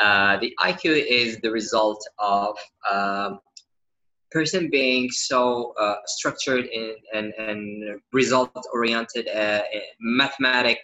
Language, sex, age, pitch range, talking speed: English, male, 20-39, 105-130 Hz, 115 wpm